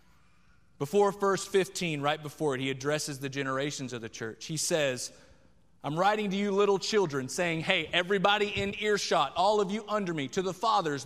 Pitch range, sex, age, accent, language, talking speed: 140-195 Hz, male, 30-49, American, English, 185 wpm